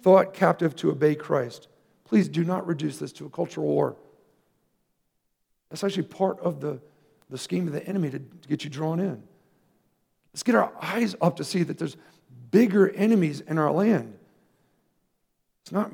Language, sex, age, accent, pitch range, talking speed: English, male, 50-69, American, 155-200 Hz, 175 wpm